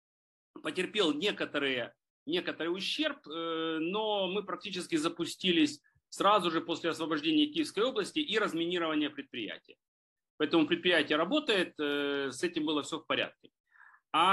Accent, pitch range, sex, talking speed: native, 140-200 Hz, male, 115 wpm